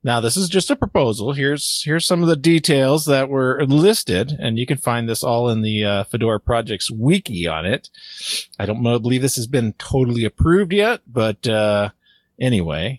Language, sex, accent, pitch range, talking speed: English, male, American, 110-150 Hz, 195 wpm